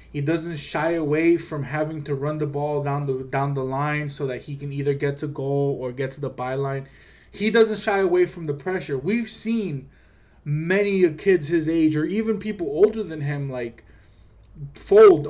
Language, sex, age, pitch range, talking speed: English, male, 20-39, 130-160 Hz, 190 wpm